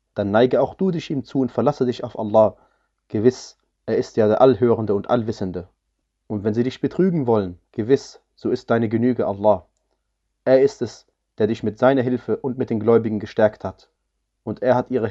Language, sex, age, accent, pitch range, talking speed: German, male, 30-49, German, 105-125 Hz, 200 wpm